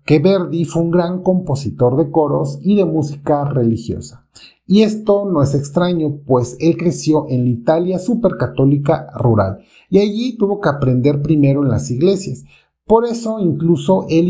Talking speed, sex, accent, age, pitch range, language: 160 wpm, male, Mexican, 40-59, 120-170 Hz, Spanish